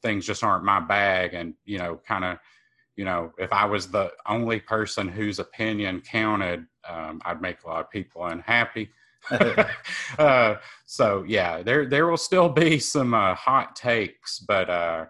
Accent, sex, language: American, male, English